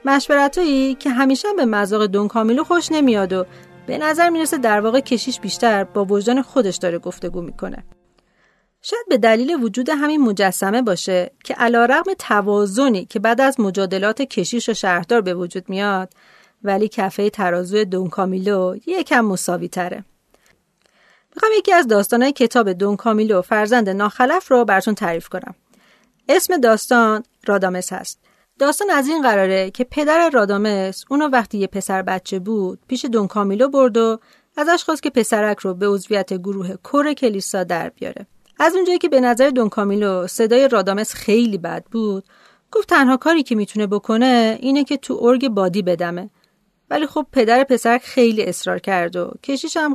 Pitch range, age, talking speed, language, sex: 195-270 Hz, 40-59, 155 wpm, Persian, female